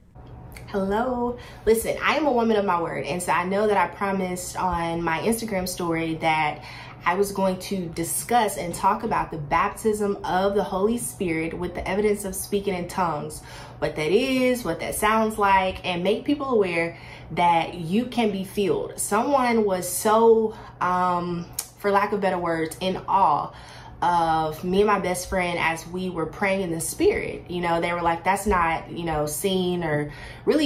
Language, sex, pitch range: English, female, 165-205 Hz